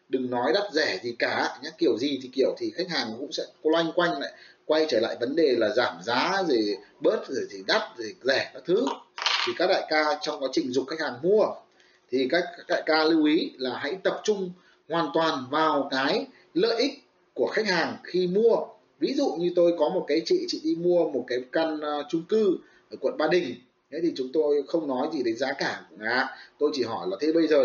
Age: 30-49